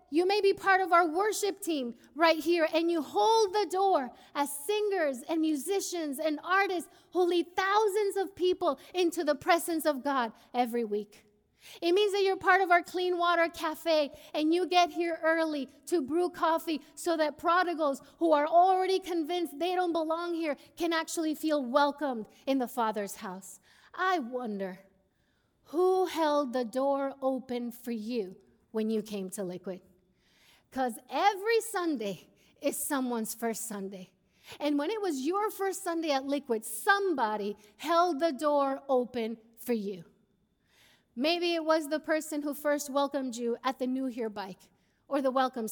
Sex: female